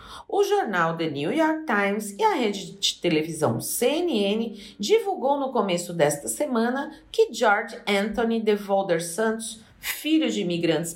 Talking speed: 140 wpm